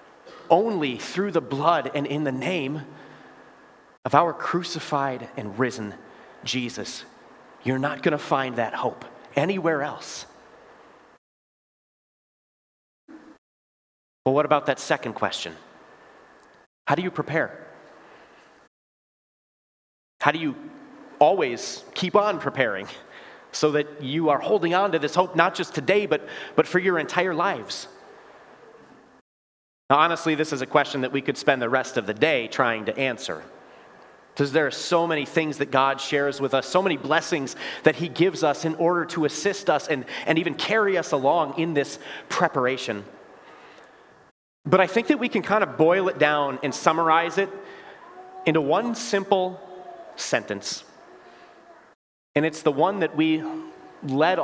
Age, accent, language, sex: 30-49, American, English, male